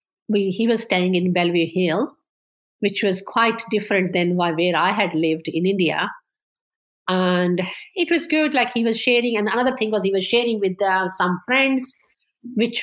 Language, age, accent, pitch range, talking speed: English, 50-69, Indian, 180-230 Hz, 175 wpm